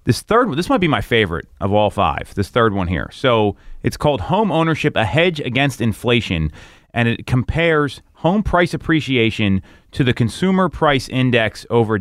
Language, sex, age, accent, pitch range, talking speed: English, male, 30-49, American, 110-140 Hz, 180 wpm